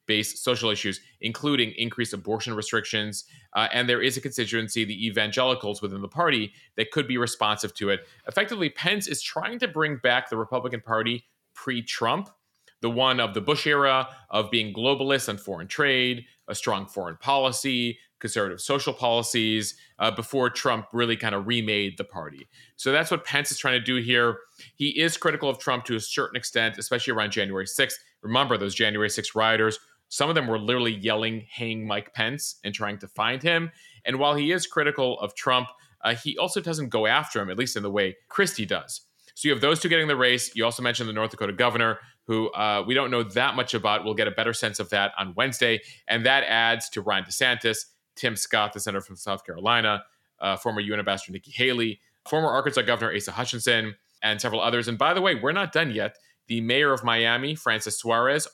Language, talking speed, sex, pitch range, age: English, 200 wpm, male, 110-130 Hz, 30-49